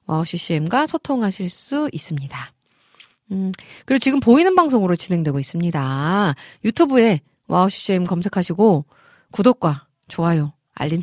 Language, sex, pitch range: Korean, female, 160-245 Hz